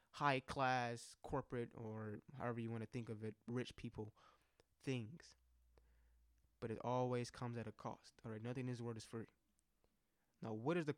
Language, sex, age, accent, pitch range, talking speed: English, male, 20-39, American, 110-130 Hz, 175 wpm